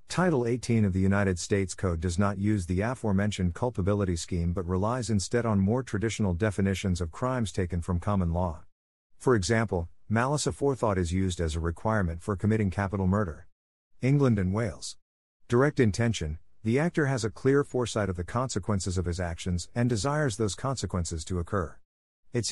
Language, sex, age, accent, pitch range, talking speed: English, male, 50-69, American, 90-120 Hz, 170 wpm